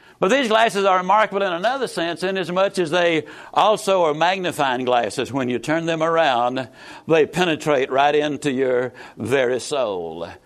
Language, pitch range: English, 145-200 Hz